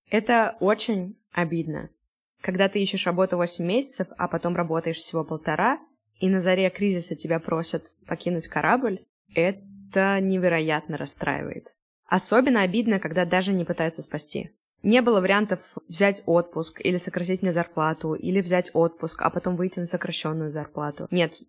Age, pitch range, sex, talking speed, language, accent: 20-39, 170-215 Hz, female, 140 wpm, Russian, native